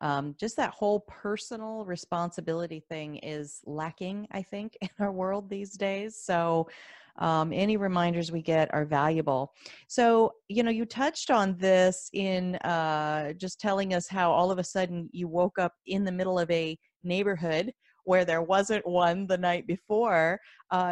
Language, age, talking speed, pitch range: English, 30-49, 165 wpm, 170-230 Hz